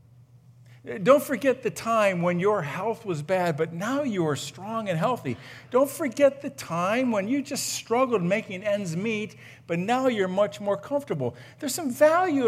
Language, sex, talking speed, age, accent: English, male, 175 wpm, 50-69, American